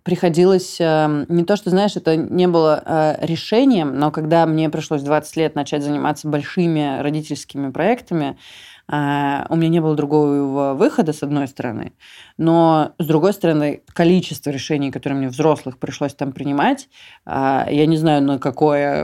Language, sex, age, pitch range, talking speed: Russian, female, 20-39, 140-165 Hz, 145 wpm